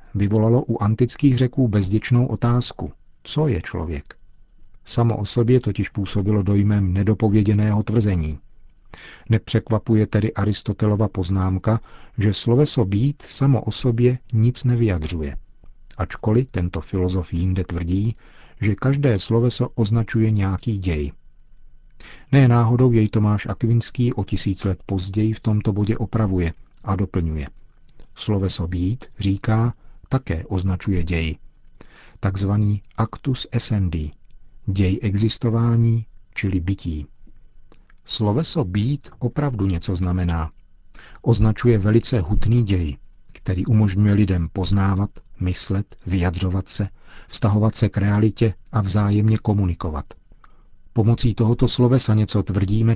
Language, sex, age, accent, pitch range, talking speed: Czech, male, 50-69, native, 95-115 Hz, 110 wpm